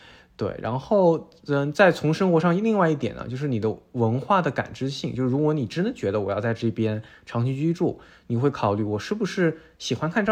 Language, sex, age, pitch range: Chinese, male, 20-39, 115-150 Hz